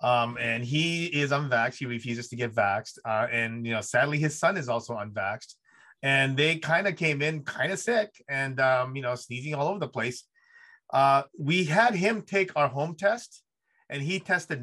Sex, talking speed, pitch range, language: male, 200 wpm, 120-165 Hz, English